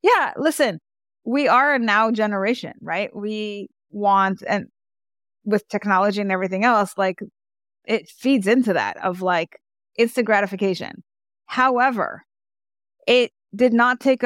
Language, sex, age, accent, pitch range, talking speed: English, female, 20-39, American, 180-230 Hz, 125 wpm